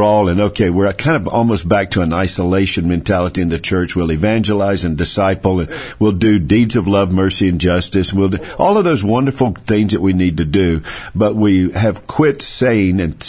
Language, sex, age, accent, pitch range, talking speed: English, male, 50-69, American, 90-125 Hz, 210 wpm